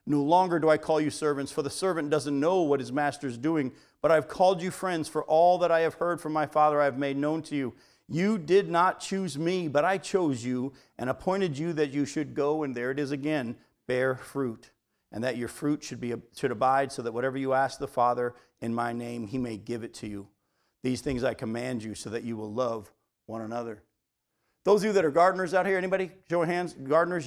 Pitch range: 140-230 Hz